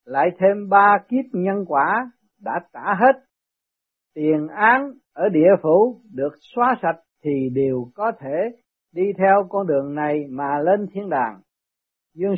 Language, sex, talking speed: Vietnamese, male, 150 wpm